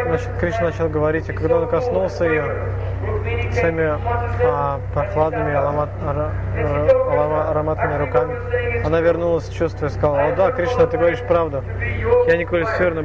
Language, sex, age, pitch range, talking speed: Russian, male, 20-39, 100-160 Hz, 120 wpm